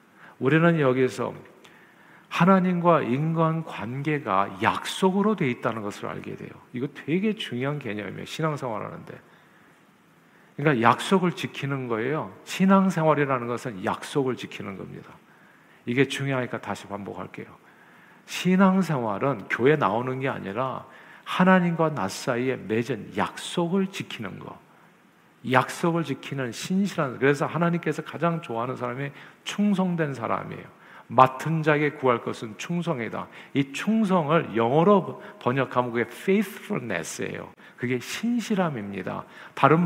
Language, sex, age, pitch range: Korean, male, 50-69, 125-185 Hz